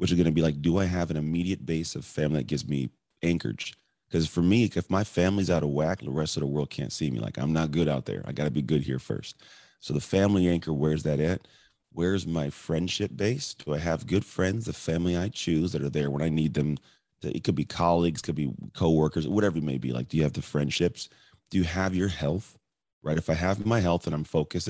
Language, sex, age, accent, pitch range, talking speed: English, male, 30-49, American, 75-90 Hz, 260 wpm